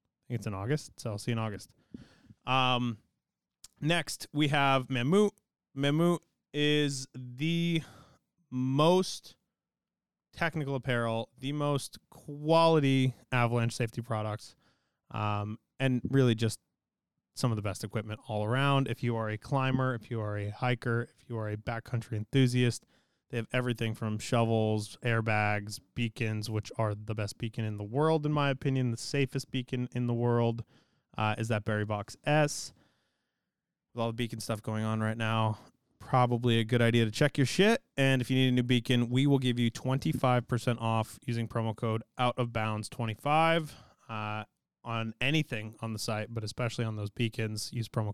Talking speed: 165 wpm